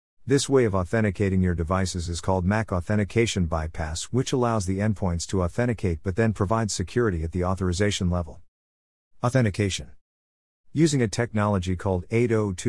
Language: English